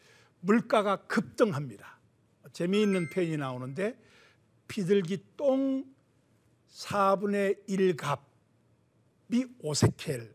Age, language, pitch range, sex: 60-79, Korean, 150-215 Hz, male